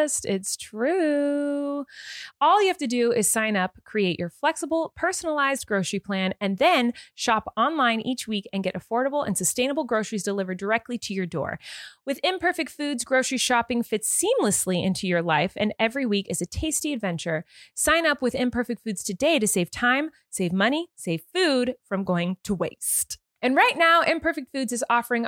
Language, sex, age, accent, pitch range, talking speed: English, female, 30-49, American, 195-295 Hz, 175 wpm